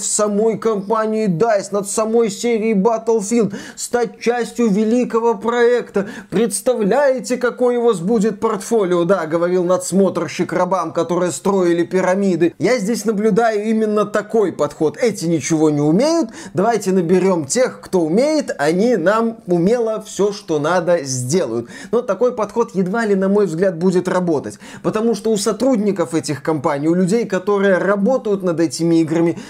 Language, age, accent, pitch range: Russian, 20-39, native, 180-225 Hz